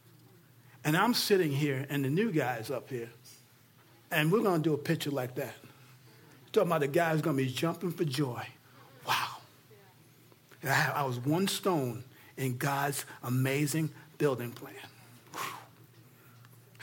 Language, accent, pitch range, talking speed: English, American, 125-160 Hz, 135 wpm